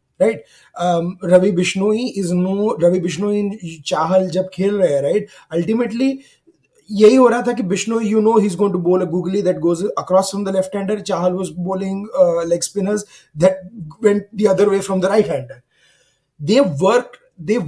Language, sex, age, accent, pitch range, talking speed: English, male, 20-39, Indian, 175-220 Hz, 185 wpm